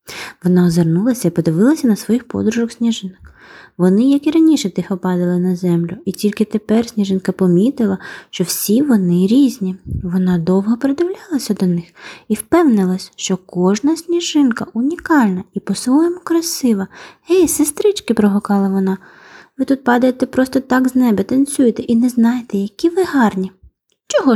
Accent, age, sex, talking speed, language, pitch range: native, 20-39, female, 145 wpm, Ukrainian, 200-295 Hz